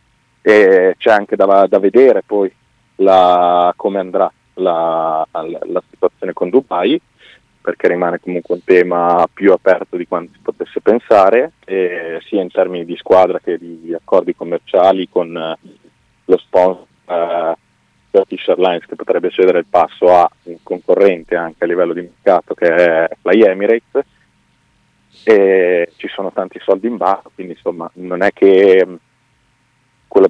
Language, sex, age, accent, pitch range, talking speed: Italian, male, 30-49, native, 85-135 Hz, 150 wpm